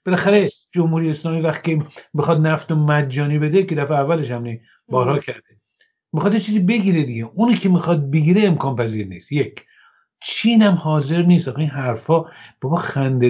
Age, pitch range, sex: 50-69, 135-180 Hz, male